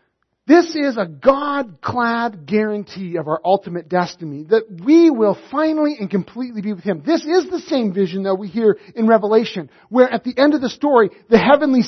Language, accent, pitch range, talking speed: English, American, 205-305 Hz, 185 wpm